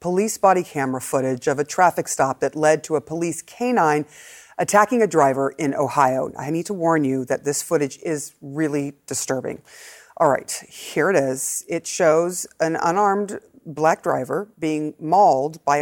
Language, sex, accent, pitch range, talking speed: English, female, American, 145-200 Hz, 165 wpm